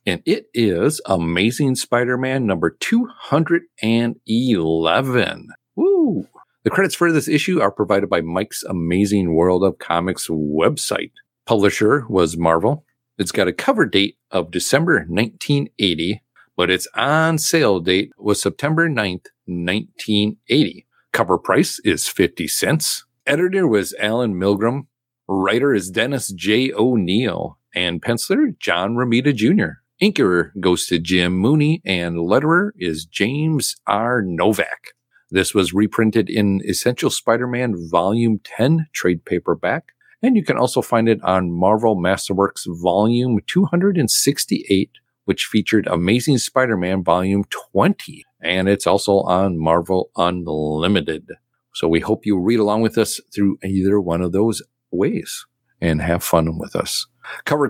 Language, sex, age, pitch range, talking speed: English, male, 40-59, 90-125 Hz, 130 wpm